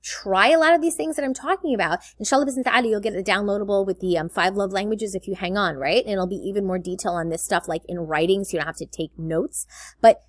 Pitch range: 185-235 Hz